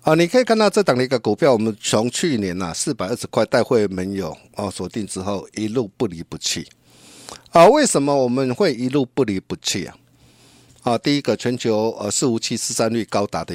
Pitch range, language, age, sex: 100-130 Hz, Chinese, 50-69, male